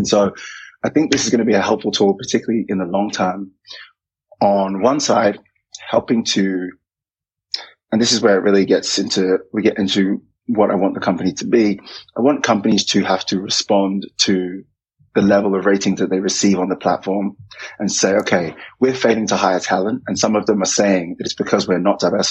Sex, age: male, 20-39